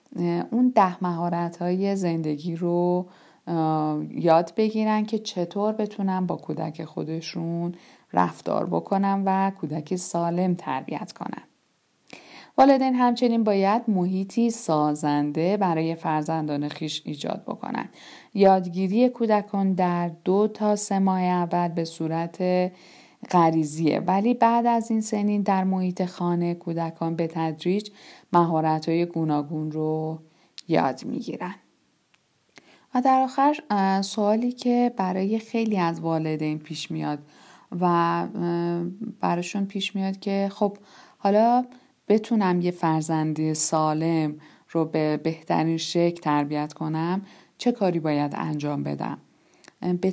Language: Persian